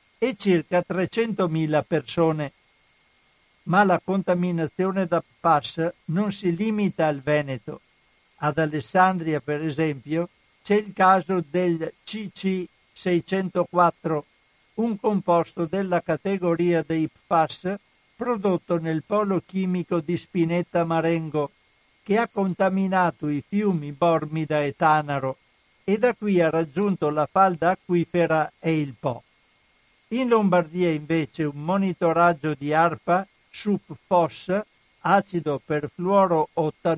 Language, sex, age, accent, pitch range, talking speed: Italian, male, 60-79, native, 155-190 Hz, 110 wpm